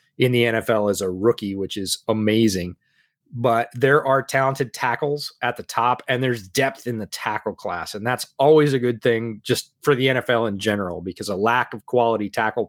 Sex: male